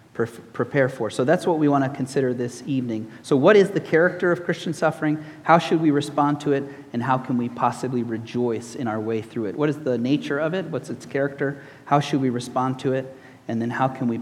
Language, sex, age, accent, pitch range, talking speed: English, male, 30-49, American, 120-155 Hz, 235 wpm